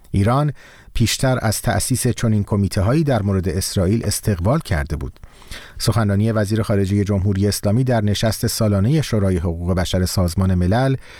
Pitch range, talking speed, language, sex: 100-125 Hz, 140 wpm, Persian, male